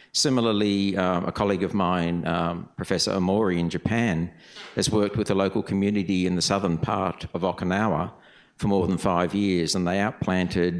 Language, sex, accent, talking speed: English, male, Australian, 170 wpm